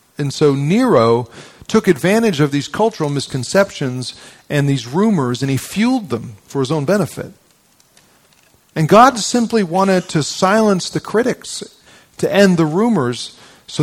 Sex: male